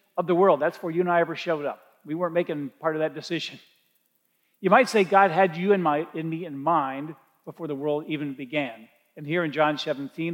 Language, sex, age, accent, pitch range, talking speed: English, male, 50-69, American, 150-185 Hz, 230 wpm